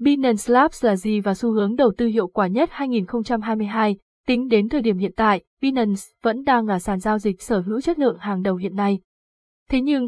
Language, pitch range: Vietnamese, 200-250 Hz